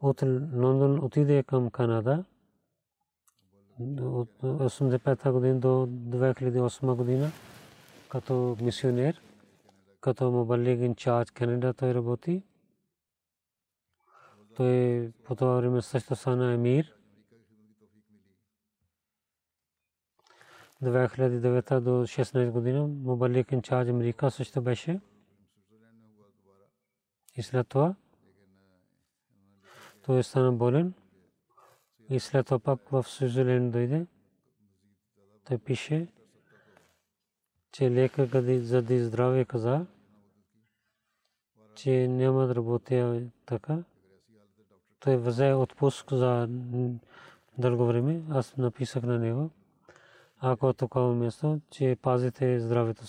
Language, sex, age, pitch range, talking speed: Bulgarian, male, 40-59, 115-130 Hz, 90 wpm